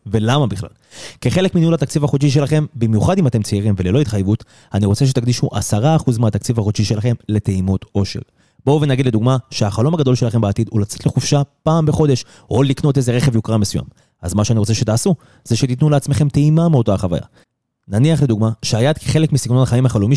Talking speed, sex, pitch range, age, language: 175 wpm, male, 105-140 Hz, 30-49, Hebrew